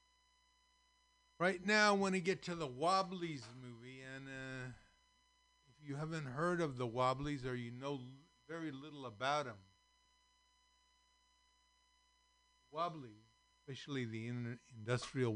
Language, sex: English, male